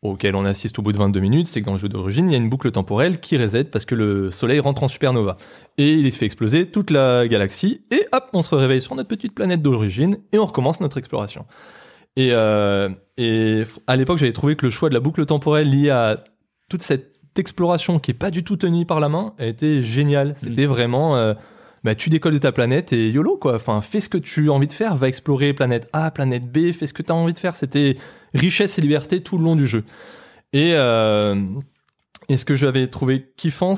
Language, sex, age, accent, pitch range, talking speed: French, male, 20-39, French, 115-155 Hz, 240 wpm